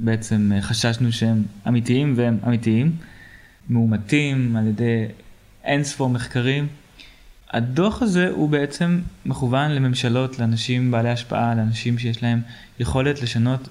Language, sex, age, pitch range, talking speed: Hebrew, male, 20-39, 115-130 Hz, 115 wpm